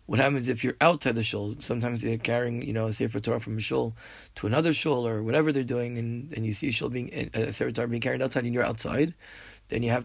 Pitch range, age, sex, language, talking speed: 110-140 Hz, 30-49, male, English, 265 wpm